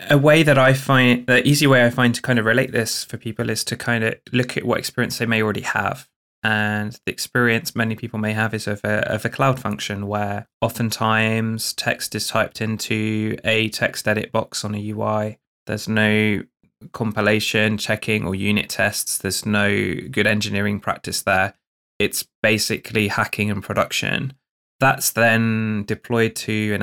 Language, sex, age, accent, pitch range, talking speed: English, male, 20-39, British, 105-120 Hz, 175 wpm